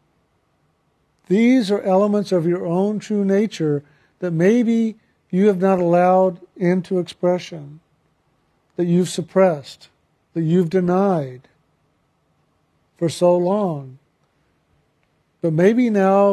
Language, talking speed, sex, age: English, 105 wpm, male, 50-69